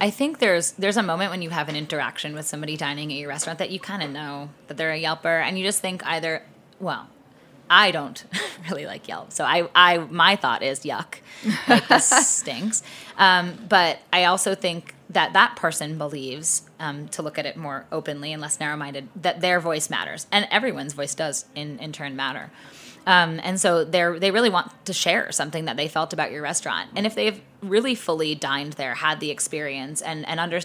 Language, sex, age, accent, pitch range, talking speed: English, female, 20-39, American, 150-185 Hz, 210 wpm